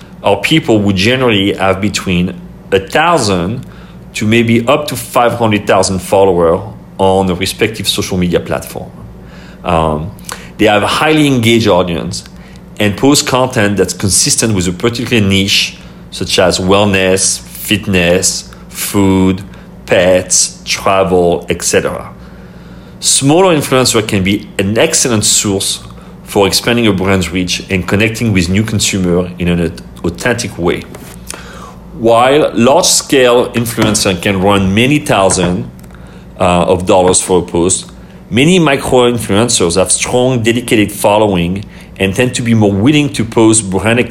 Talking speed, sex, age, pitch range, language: 130 wpm, male, 40-59, 95-120 Hz, English